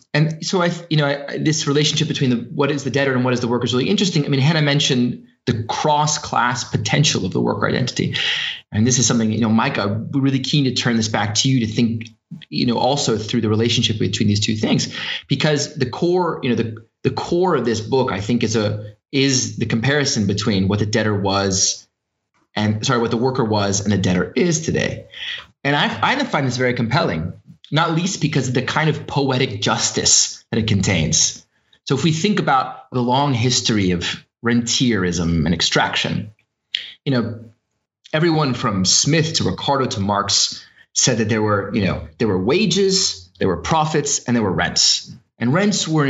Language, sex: English, male